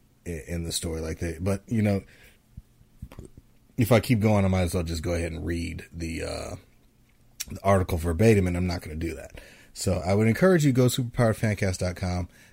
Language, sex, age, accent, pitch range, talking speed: English, male, 30-49, American, 85-120 Hz, 200 wpm